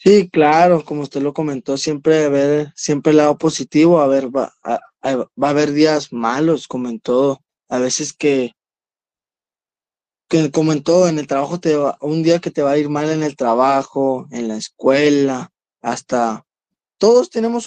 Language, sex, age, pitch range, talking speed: Spanish, male, 20-39, 145-180 Hz, 160 wpm